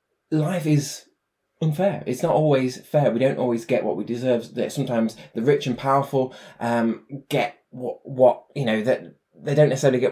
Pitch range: 120-150 Hz